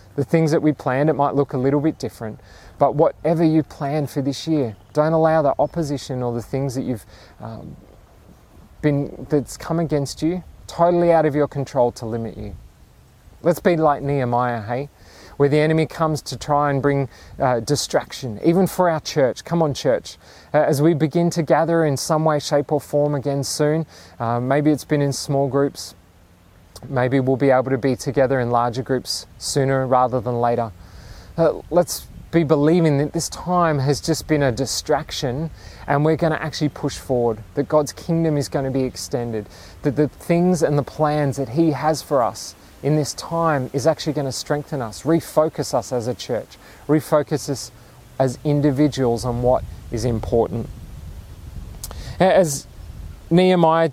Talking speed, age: 180 wpm, 30-49